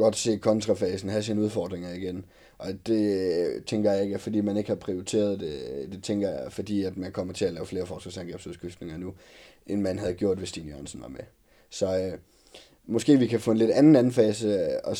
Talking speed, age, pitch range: 210 wpm, 20-39, 95-110 Hz